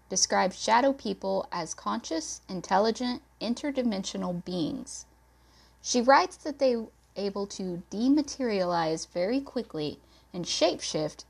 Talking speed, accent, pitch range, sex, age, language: 105 wpm, American, 170-260 Hz, female, 20-39, English